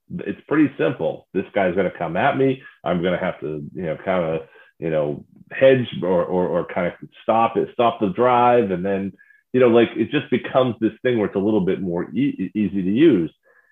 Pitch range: 95-130 Hz